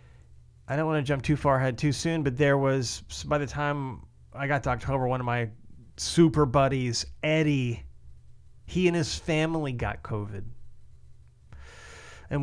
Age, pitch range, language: 30-49, 100-140 Hz, English